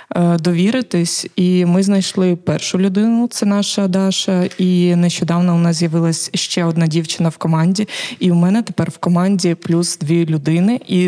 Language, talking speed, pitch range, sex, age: Ukrainian, 155 wpm, 175-200 Hz, female, 20-39